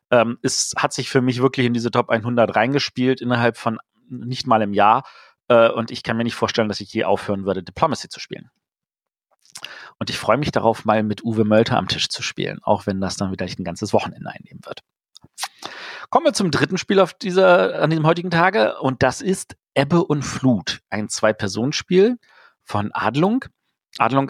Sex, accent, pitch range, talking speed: male, German, 110-145 Hz, 185 wpm